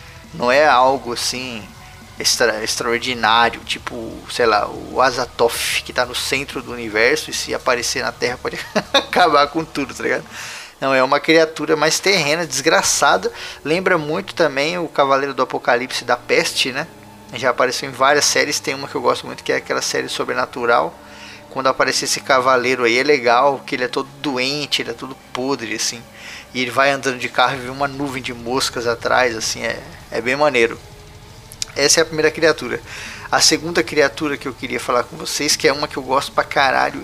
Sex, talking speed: male, 190 wpm